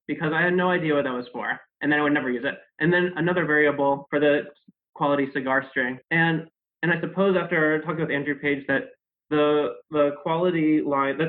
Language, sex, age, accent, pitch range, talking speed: English, male, 20-39, American, 130-160 Hz, 205 wpm